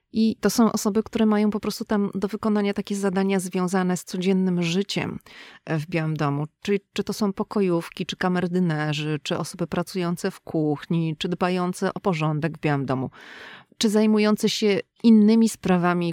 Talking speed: 165 wpm